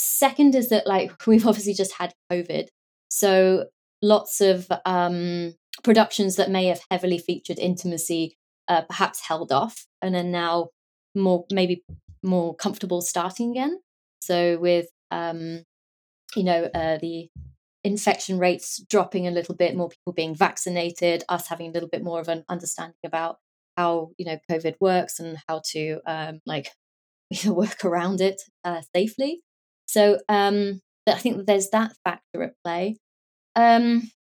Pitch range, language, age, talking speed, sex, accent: 175-225 Hz, English, 20-39, 150 wpm, female, British